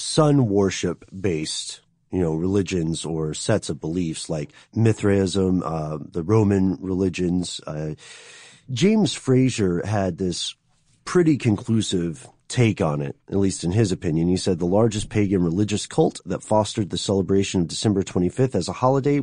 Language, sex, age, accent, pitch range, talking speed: English, male, 40-59, American, 90-125 Hz, 145 wpm